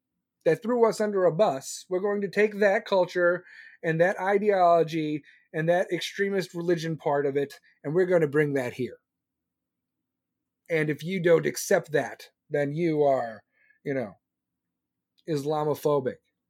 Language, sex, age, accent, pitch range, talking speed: English, male, 30-49, American, 150-200 Hz, 150 wpm